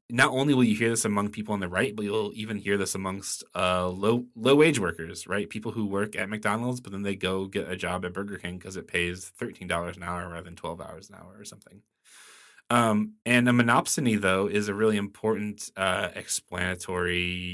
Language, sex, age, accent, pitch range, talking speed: English, male, 20-39, American, 95-120 Hz, 215 wpm